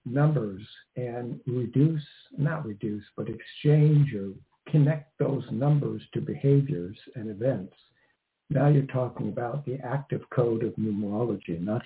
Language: English